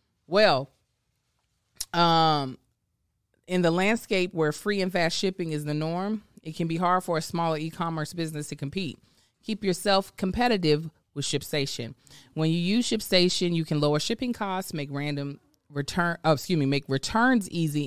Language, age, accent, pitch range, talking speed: English, 30-49, American, 150-195 Hz, 150 wpm